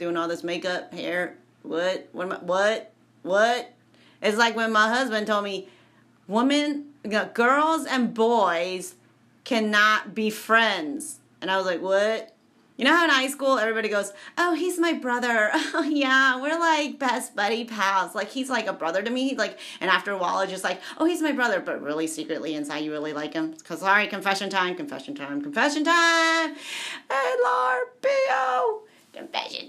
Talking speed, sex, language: 185 wpm, female, English